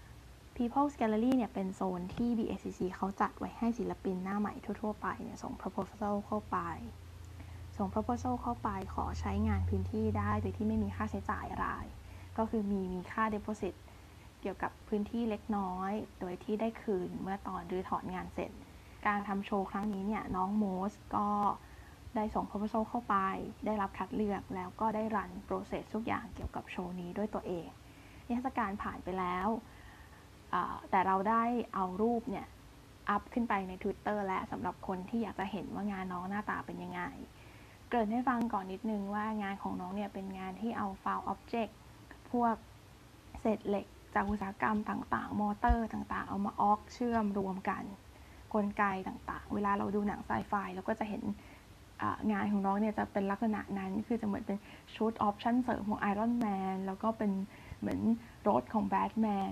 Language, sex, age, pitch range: Thai, female, 10-29, 190-220 Hz